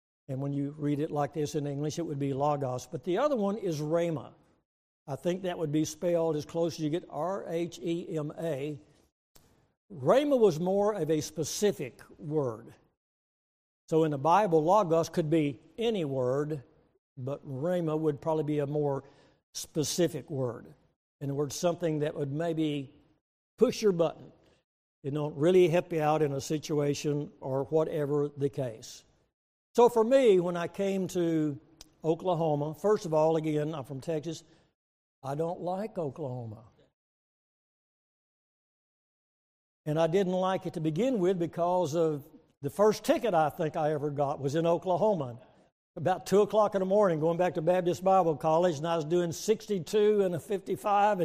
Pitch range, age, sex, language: 150-185 Hz, 60-79, male, English